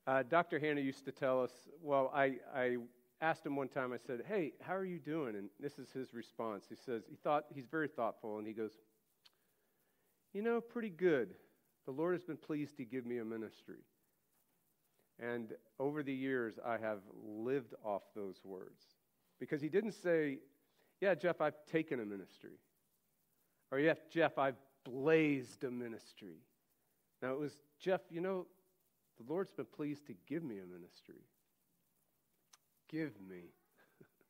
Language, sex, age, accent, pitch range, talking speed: English, male, 50-69, American, 115-160 Hz, 170 wpm